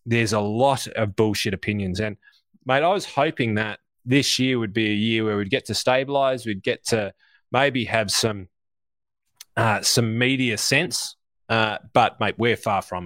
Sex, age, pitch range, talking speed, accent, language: male, 20-39, 105-125 Hz, 180 wpm, Australian, English